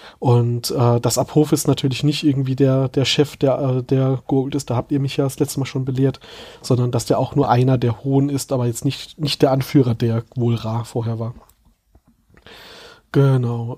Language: German